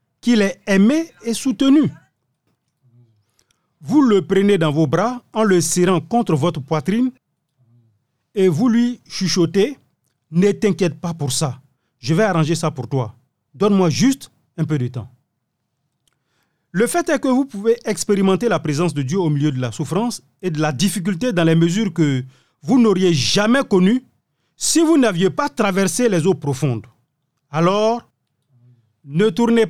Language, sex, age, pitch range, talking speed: French, male, 40-59, 140-205 Hz, 155 wpm